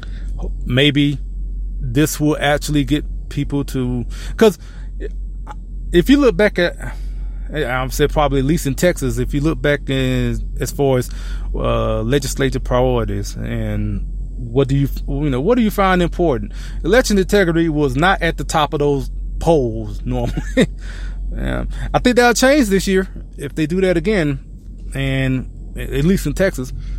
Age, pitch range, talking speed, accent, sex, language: 20-39, 115-150 Hz, 155 wpm, American, male, English